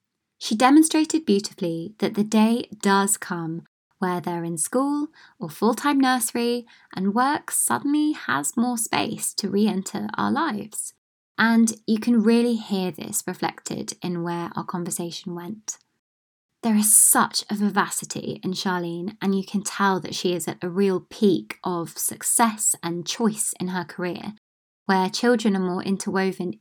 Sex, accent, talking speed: female, British, 150 wpm